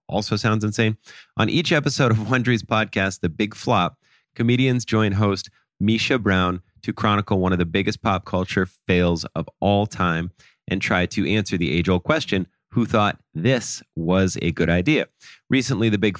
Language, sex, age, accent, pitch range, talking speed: English, male, 30-49, American, 90-120 Hz, 170 wpm